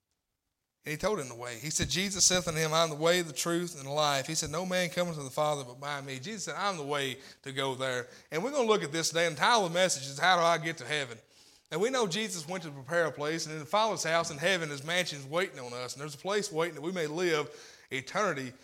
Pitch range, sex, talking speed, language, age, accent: 145-185 Hz, male, 305 wpm, English, 30-49, American